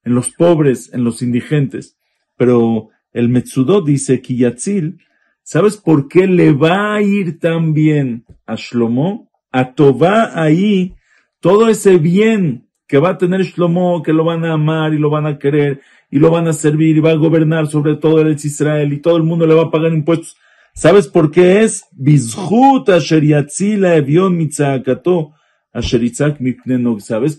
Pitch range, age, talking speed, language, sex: 130-170 Hz, 50-69, 155 wpm, English, male